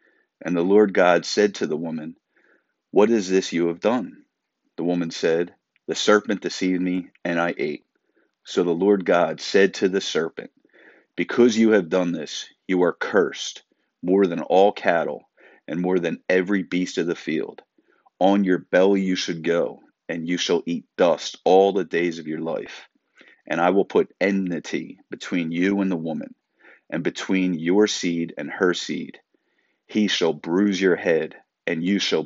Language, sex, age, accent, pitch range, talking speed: English, male, 40-59, American, 85-95 Hz, 175 wpm